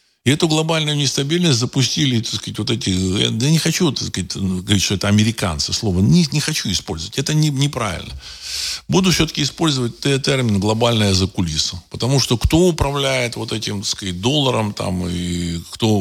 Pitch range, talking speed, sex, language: 90-130 Hz, 165 wpm, male, Russian